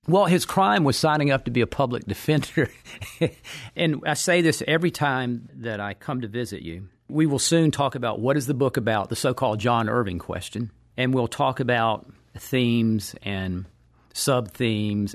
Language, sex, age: English, male, 50-69